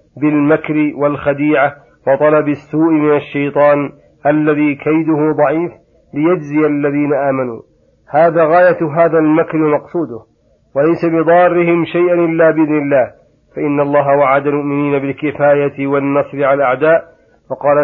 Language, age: Arabic, 40-59